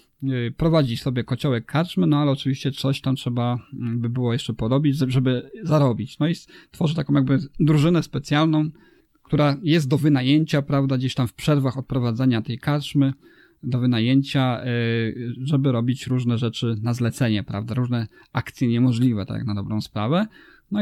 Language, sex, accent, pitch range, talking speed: Polish, male, native, 125-150 Hz, 150 wpm